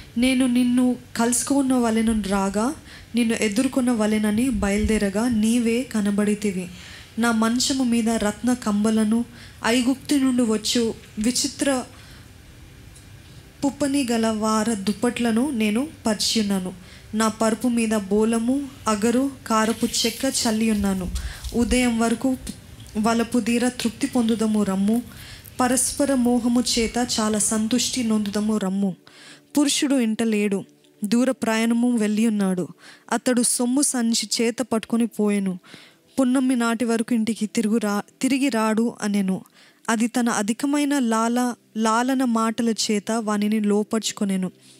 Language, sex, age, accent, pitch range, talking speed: Telugu, female, 20-39, native, 220-245 Hz, 105 wpm